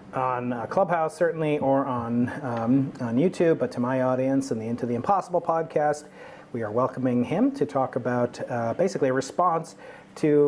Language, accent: English, American